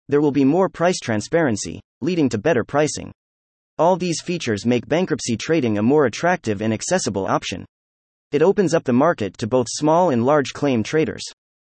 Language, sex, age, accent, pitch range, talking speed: English, male, 30-49, American, 105-160 Hz, 175 wpm